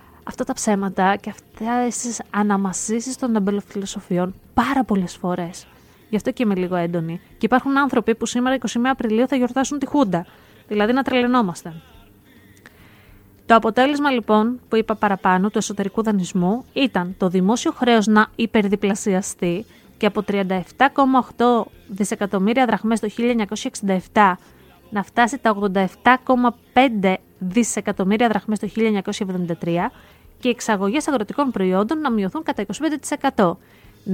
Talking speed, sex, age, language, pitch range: 125 wpm, female, 30-49, Greek, 195-250 Hz